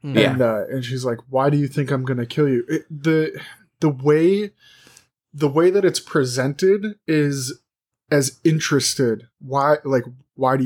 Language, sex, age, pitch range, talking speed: English, male, 20-39, 125-155 Hz, 165 wpm